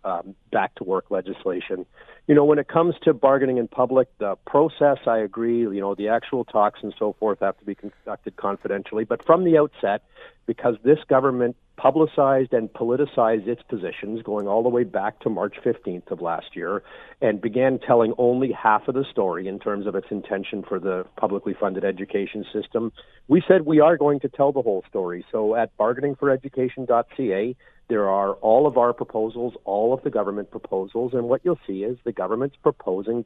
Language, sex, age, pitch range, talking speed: English, male, 50-69, 105-130 Hz, 185 wpm